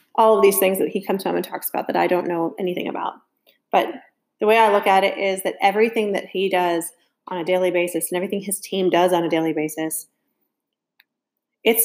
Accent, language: American, English